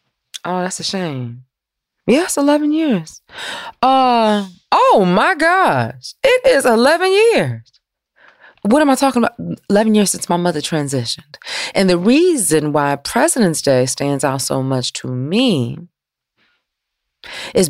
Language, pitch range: English, 140-205 Hz